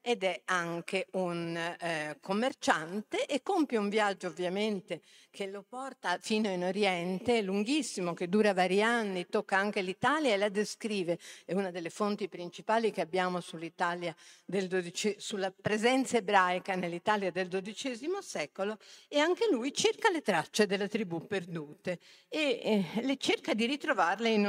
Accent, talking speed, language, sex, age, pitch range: native, 150 wpm, Italian, female, 50-69, 175-215 Hz